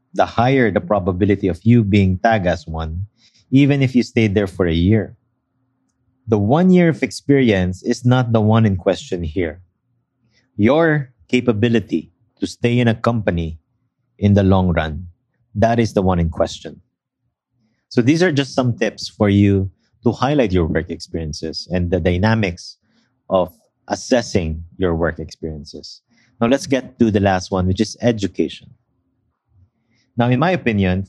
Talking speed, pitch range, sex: 160 wpm, 95-125 Hz, male